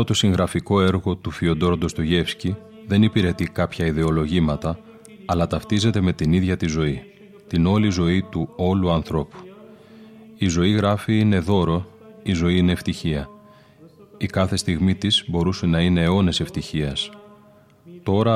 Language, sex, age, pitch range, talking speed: Greek, male, 30-49, 80-105 Hz, 140 wpm